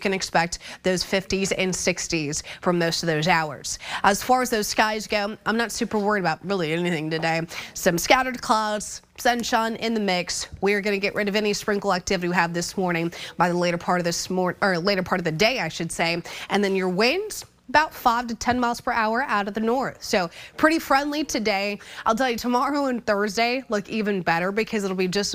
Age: 20-39